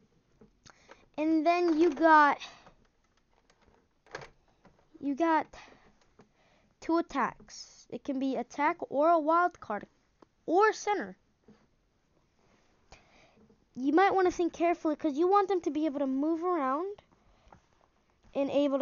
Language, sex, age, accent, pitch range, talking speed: English, female, 20-39, American, 255-345 Hz, 115 wpm